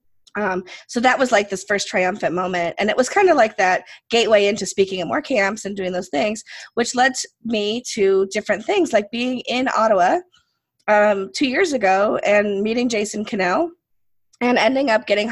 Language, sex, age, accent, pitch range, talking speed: English, female, 20-39, American, 210-275 Hz, 190 wpm